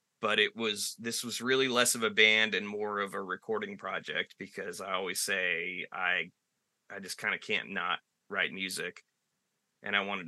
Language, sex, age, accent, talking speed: English, male, 20-39, American, 185 wpm